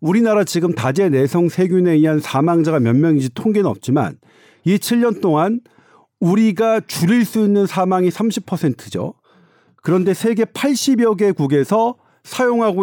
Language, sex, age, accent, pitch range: Korean, male, 40-59, native, 155-215 Hz